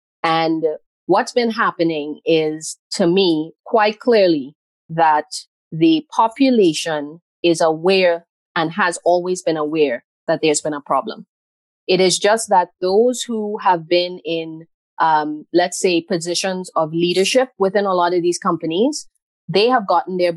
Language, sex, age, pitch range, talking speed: English, female, 20-39, 160-195 Hz, 145 wpm